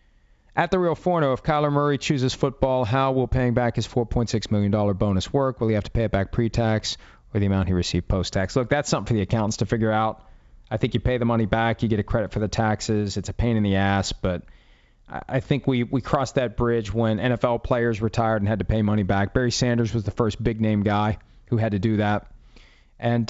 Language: English